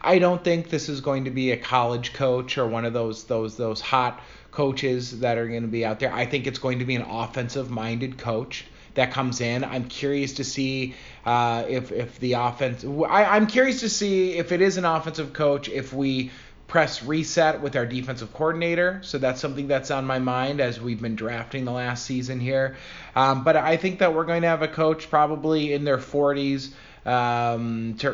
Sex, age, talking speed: male, 30-49, 210 wpm